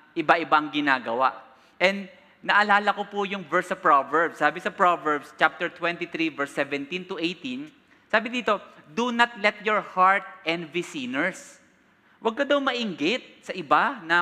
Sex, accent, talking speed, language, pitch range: male, Filipino, 150 wpm, English, 150-195 Hz